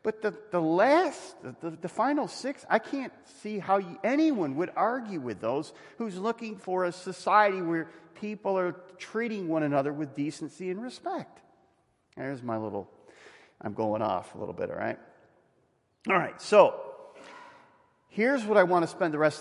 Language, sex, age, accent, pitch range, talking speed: English, male, 40-59, American, 140-215 Hz, 175 wpm